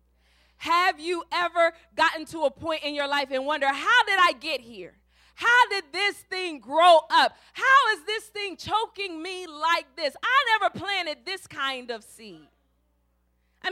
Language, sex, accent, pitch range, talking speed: English, female, American, 285-410 Hz, 170 wpm